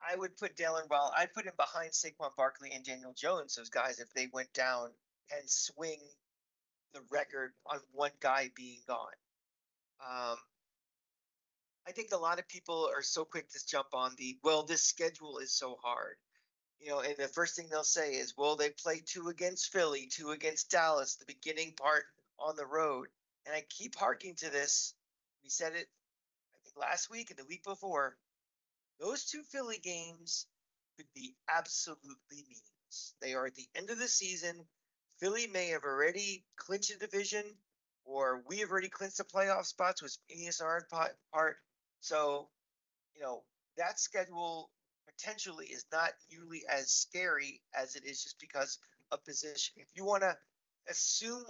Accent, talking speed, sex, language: American, 170 wpm, male, English